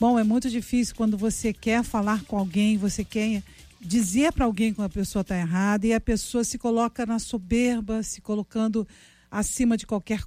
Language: Portuguese